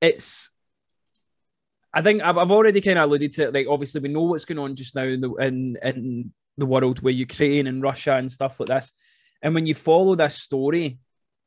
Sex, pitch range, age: male, 130-155 Hz, 20-39